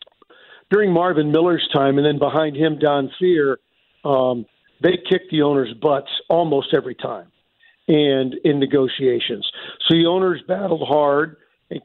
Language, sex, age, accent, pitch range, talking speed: English, male, 50-69, American, 145-180 Hz, 140 wpm